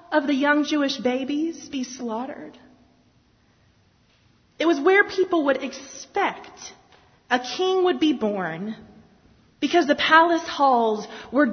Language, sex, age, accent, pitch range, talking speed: English, female, 30-49, American, 220-325 Hz, 120 wpm